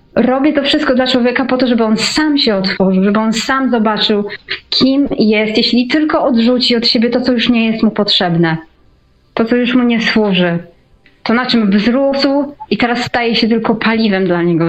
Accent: native